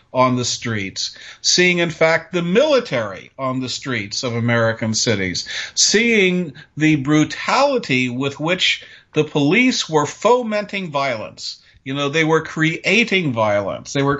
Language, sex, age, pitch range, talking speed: English, male, 50-69, 125-160 Hz, 125 wpm